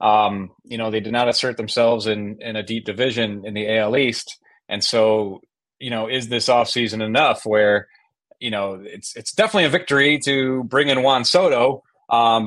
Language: English